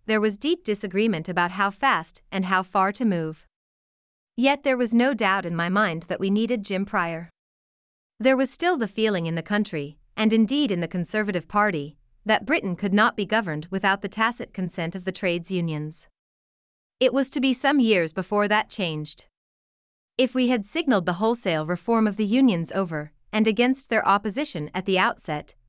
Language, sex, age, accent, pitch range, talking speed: English, female, 30-49, American, 175-230 Hz, 185 wpm